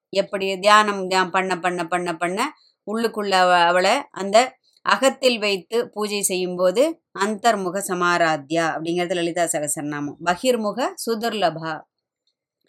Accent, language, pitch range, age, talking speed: native, Tamil, 195-240 Hz, 20-39, 105 wpm